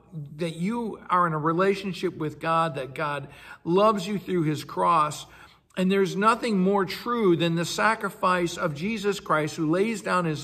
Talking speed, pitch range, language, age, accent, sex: 170 wpm, 145-185 Hz, English, 60-79, American, male